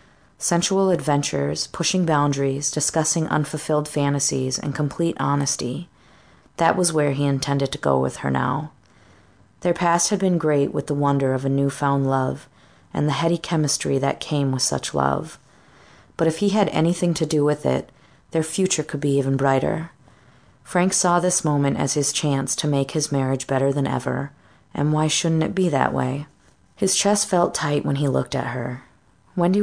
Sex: female